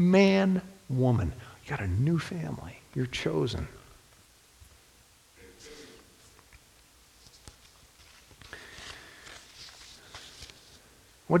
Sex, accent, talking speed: male, American, 55 wpm